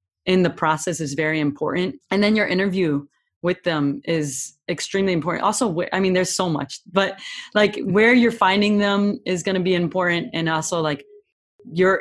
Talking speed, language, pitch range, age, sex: 175 wpm, English, 160-190 Hz, 20-39, female